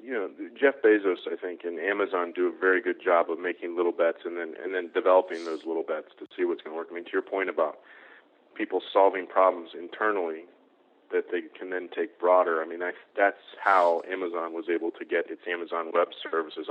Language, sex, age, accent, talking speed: English, male, 40-59, American, 215 wpm